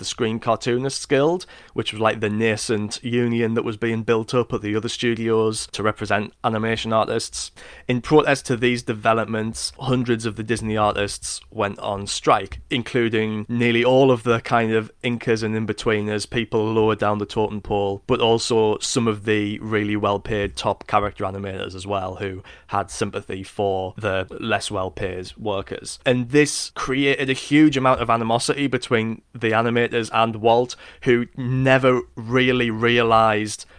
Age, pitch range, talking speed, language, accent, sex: 20-39, 105-120 Hz, 160 wpm, English, British, male